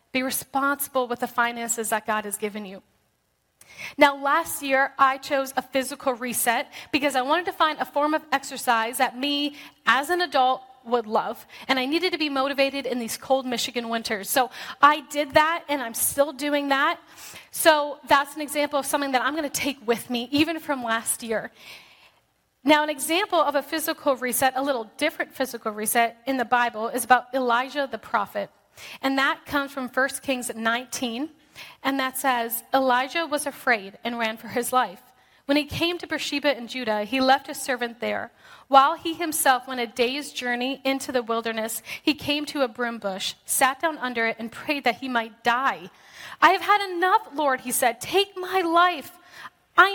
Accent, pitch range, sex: American, 245-300 Hz, female